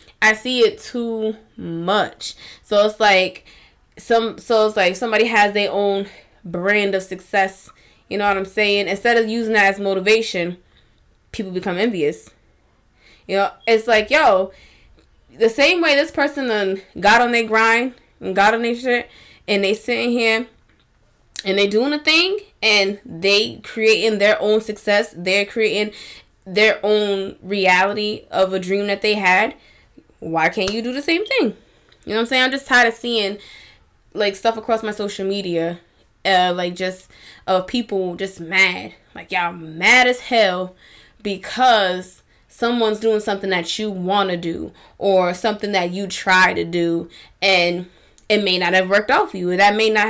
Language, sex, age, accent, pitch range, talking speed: English, female, 10-29, American, 190-225 Hz, 175 wpm